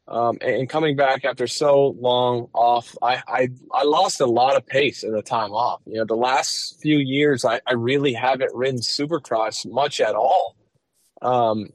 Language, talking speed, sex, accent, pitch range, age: English, 185 wpm, male, American, 115-140 Hz, 20-39